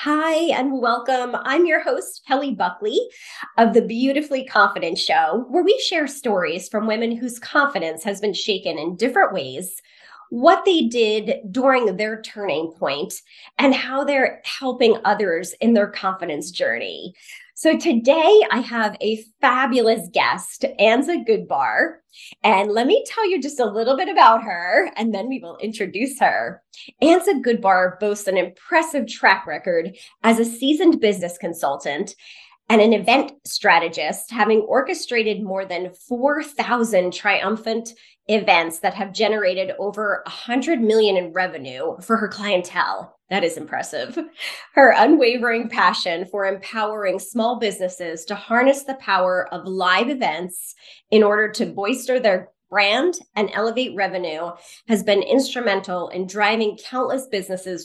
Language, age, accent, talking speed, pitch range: English, 20-39, American, 140 wpm, 195-270 Hz